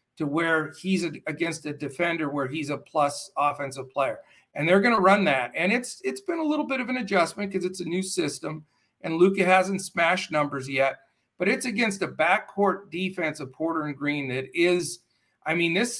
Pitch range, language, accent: 140-180 Hz, English, American